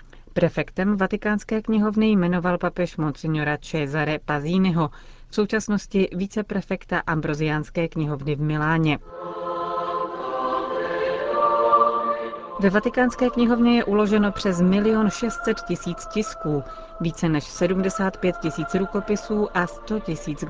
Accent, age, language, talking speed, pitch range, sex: native, 40-59, Czech, 95 wpm, 155-200 Hz, female